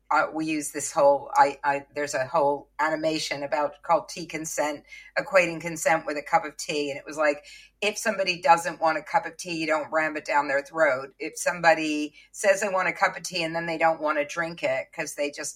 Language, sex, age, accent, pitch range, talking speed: English, female, 50-69, American, 160-220 Hz, 235 wpm